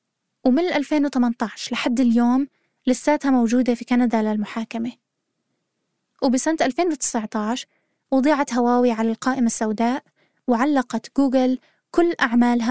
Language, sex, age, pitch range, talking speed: Arabic, female, 20-39, 235-280 Hz, 95 wpm